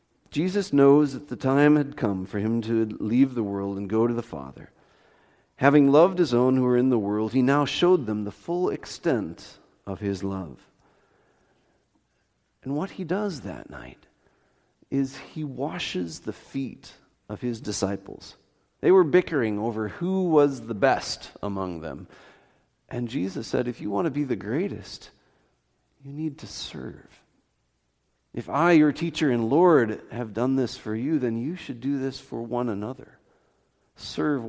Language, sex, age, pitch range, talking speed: English, male, 40-59, 105-145 Hz, 165 wpm